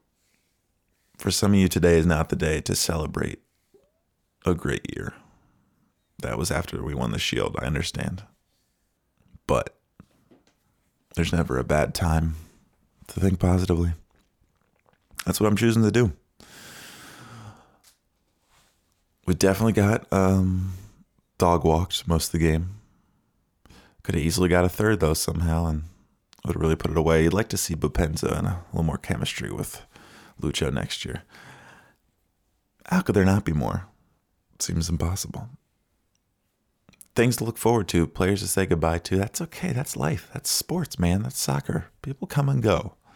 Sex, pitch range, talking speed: male, 85-105 Hz, 150 wpm